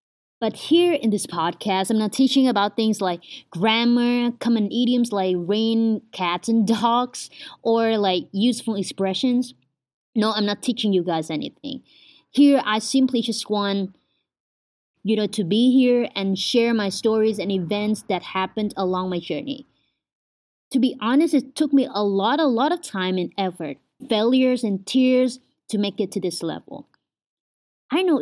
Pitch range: 200-265 Hz